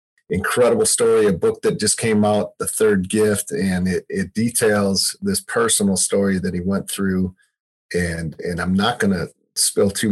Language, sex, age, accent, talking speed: English, male, 40-59, American, 180 wpm